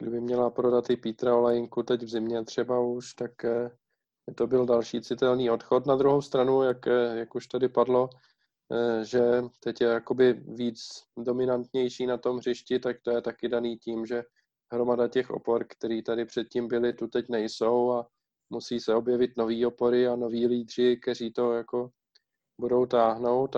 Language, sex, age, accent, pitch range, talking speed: Czech, male, 20-39, native, 110-125 Hz, 165 wpm